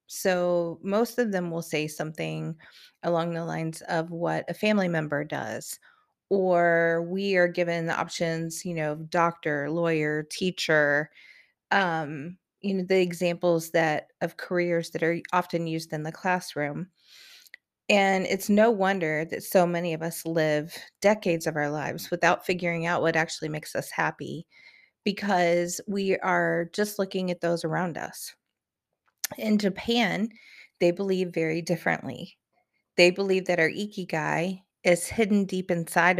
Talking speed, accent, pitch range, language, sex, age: 145 wpm, American, 165-190 Hz, English, female, 30-49